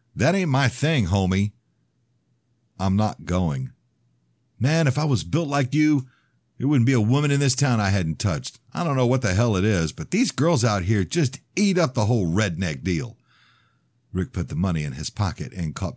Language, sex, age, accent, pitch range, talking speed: English, male, 50-69, American, 90-125 Hz, 205 wpm